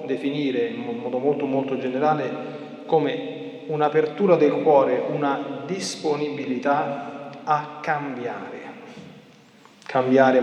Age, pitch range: 40-59, 135-180 Hz